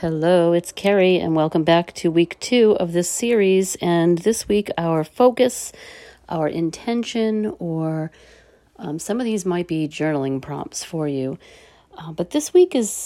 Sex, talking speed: female, 160 wpm